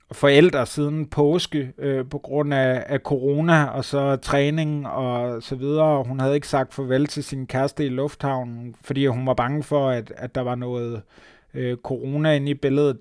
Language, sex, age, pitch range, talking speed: Danish, male, 30-49, 130-150 Hz, 185 wpm